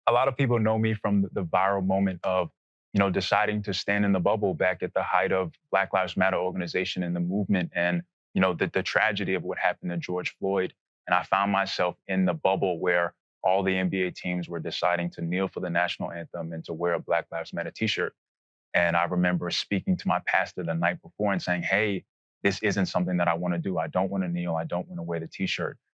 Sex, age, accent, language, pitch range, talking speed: male, 20-39, American, English, 85-95 Hz, 240 wpm